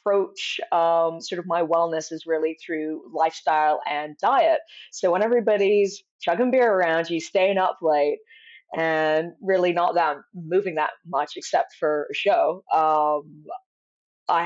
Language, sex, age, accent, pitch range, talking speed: English, female, 20-39, American, 155-210 Hz, 145 wpm